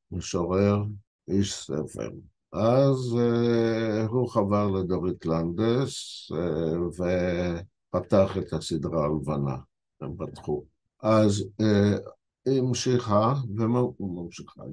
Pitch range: 80-110 Hz